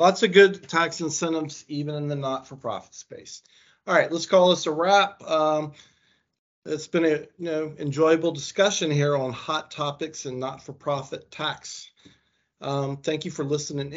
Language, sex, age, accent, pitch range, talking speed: English, male, 40-59, American, 135-165 Hz, 160 wpm